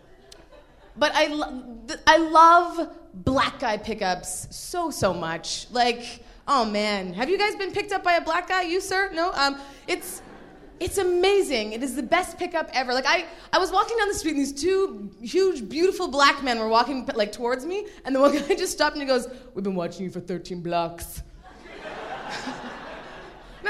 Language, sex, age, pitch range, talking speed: English, female, 20-39, 205-315 Hz, 190 wpm